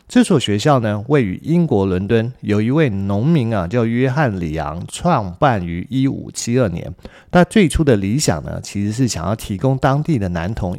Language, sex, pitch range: Chinese, male, 95-145 Hz